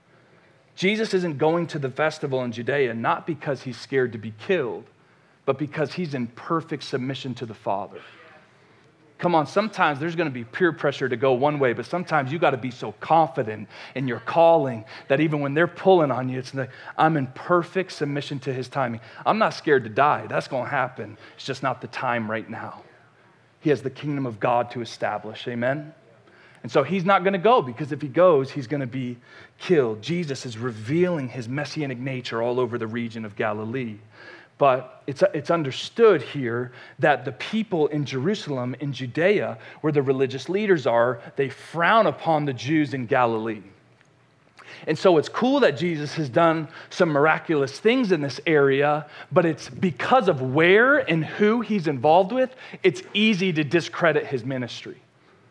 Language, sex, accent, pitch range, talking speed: English, male, American, 130-170 Hz, 185 wpm